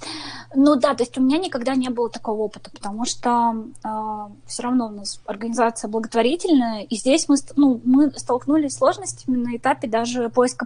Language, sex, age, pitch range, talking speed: Russian, female, 20-39, 225-265 Hz, 180 wpm